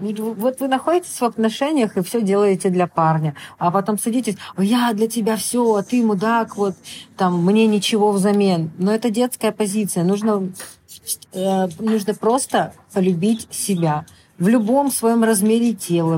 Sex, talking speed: female, 150 wpm